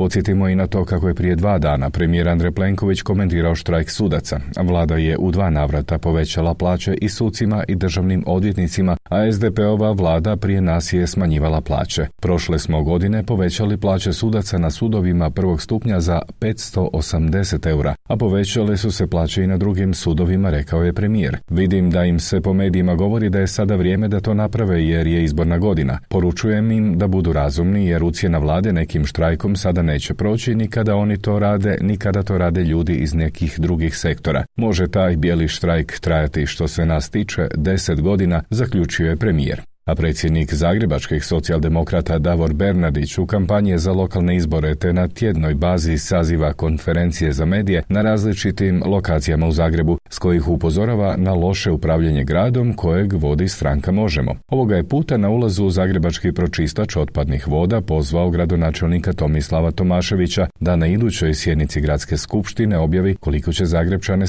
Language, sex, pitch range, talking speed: Croatian, male, 80-100 Hz, 165 wpm